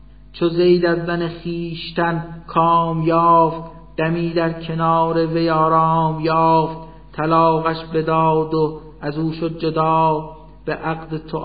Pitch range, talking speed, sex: 155-160 Hz, 105 wpm, male